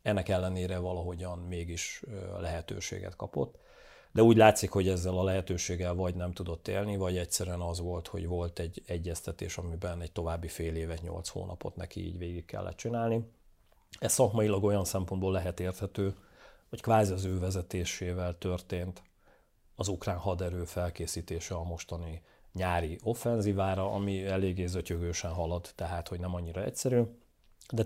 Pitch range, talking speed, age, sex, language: 85-105 Hz, 145 wpm, 40-59, male, Hungarian